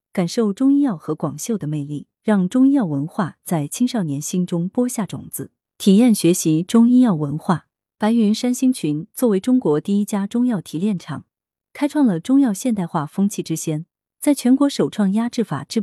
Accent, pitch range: native, 160-230 Hz